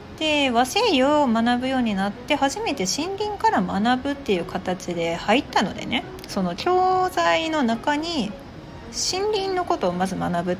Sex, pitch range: female, 185-295 Hz